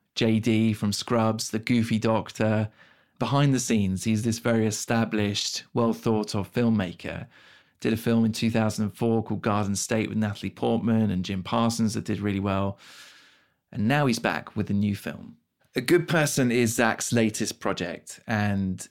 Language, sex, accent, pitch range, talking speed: English, male, British, 100-115 Hz, 155 wpm